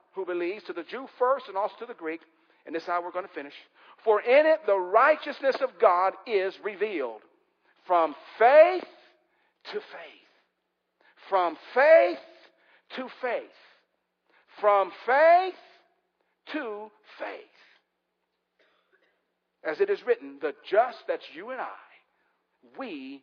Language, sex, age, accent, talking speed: English, male, 50-69, American, 130 wpm